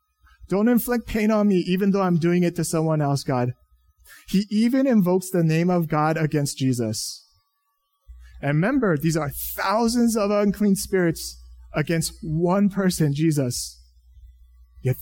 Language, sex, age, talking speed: English, male, 30-49, 145 wpm